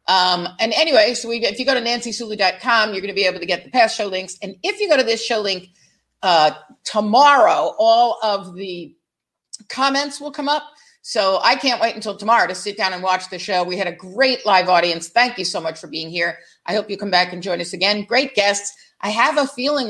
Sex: female